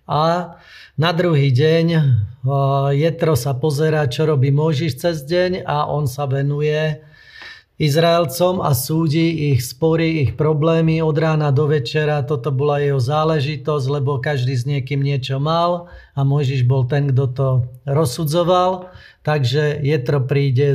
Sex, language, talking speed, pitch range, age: male, Slovak, 140 wpm, 140-165 Hz, 30-49